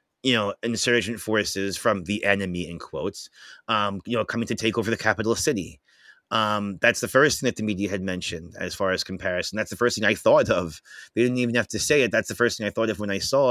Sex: male